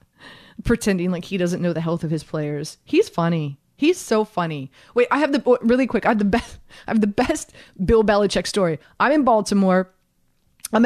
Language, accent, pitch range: English, American, 195-250 Hz